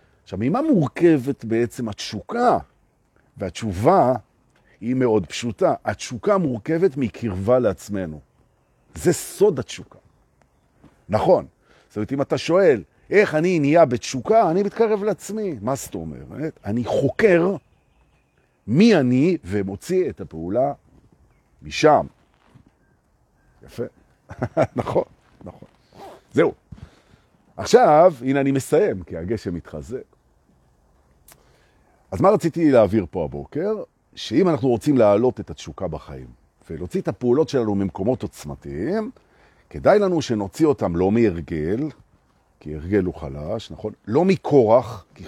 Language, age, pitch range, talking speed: Hebrew, 50-69, 95-155 Hz, 105 wpm